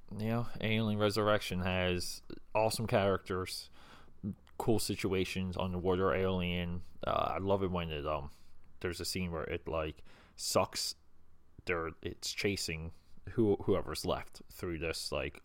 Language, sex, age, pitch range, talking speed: English, male, 20-39, 85-95 Hz, 130 wpm